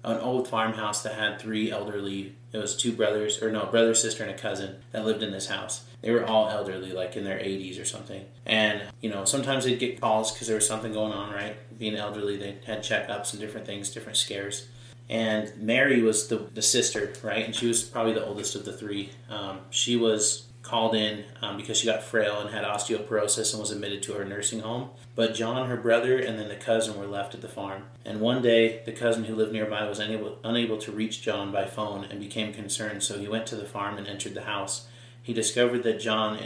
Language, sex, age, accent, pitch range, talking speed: English, male, 30-49, American, 105-115 Hz, 230 wpm